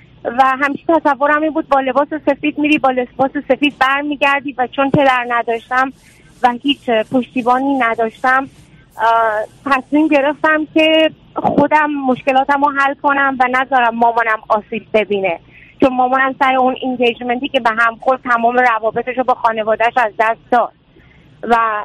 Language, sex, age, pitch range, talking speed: Persian, female, 30-49, 225-280 Hz, 145 wpm